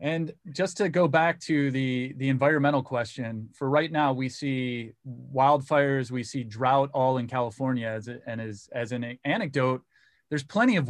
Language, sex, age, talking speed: English, male, 20-39, 175 wpm